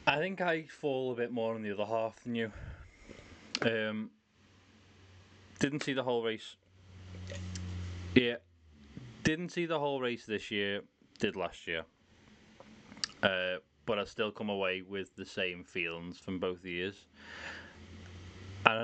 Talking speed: 140 wpm